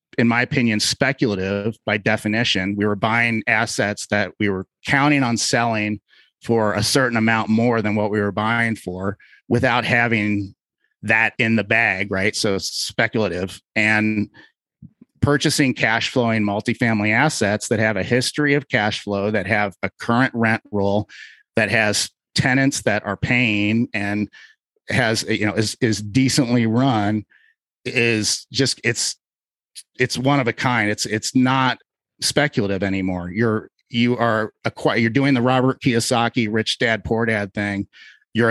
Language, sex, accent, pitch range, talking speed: English, male, American, 105-125 Hz, 155 wpm